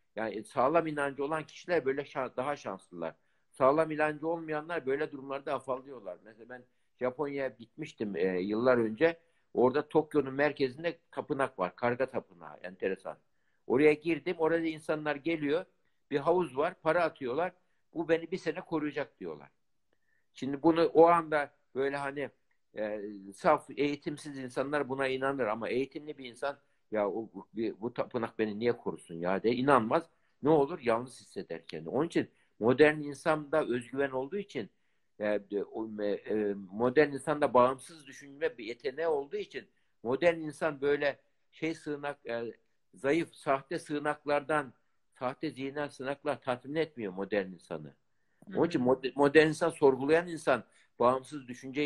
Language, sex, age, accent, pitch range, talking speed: Turkish, male, 60-79, native, 125-160 Hz, 135 wpm